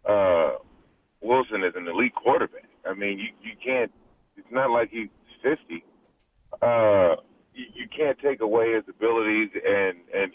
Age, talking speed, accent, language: 30-49, 150 wpm, American, English